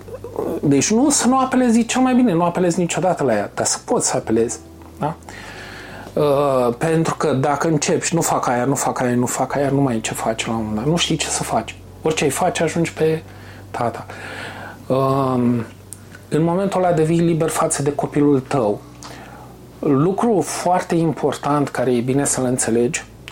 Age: 30-49